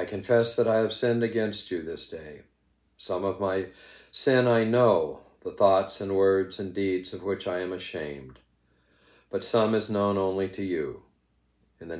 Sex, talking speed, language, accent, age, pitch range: male, 180 wpm, English, American, 60-79, 65-105 Hz